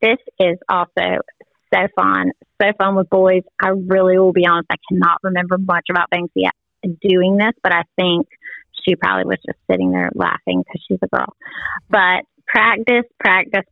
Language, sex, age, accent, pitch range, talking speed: English, female, 30-49, American, 180-240 Hz, 170 wpm